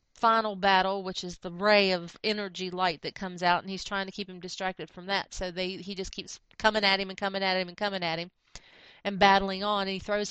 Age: 40-59